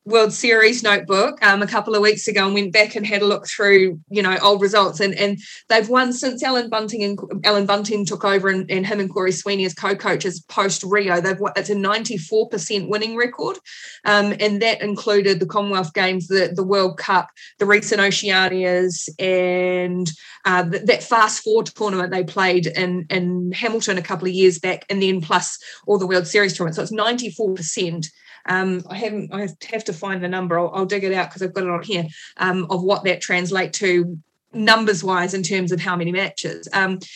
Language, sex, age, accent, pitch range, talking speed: English, female, 20-39, Australian, 185-215 Hz, 205 wpm